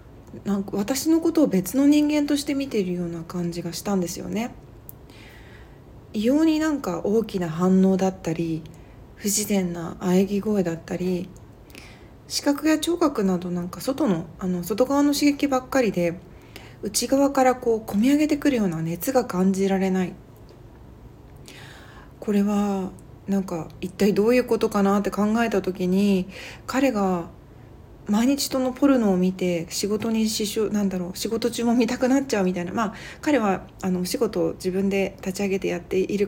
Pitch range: 180-235 Hz